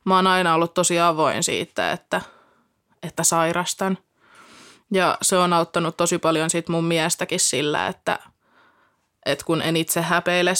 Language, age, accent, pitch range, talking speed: Finnish, 20-39, native, 165-185 Hz, 140 wpm